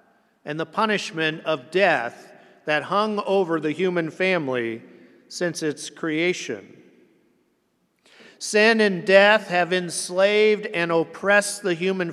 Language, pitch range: English, 170-215 Hz